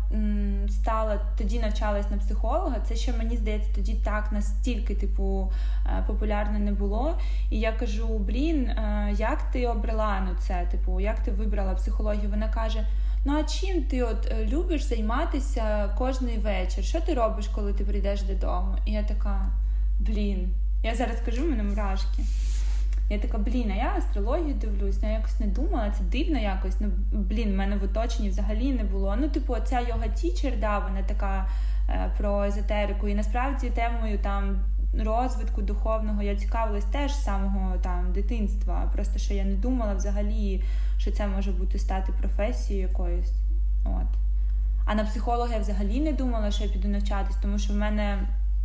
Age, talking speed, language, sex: 20-39, 165 wpm, Ukrainian, female